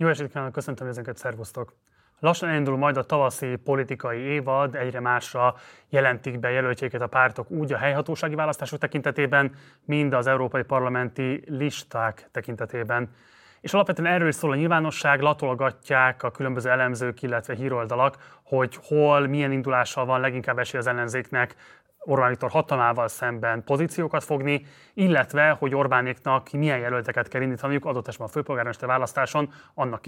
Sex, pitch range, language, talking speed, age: male, 125-150 Hz, Hungarian, 140 wpm, 30-49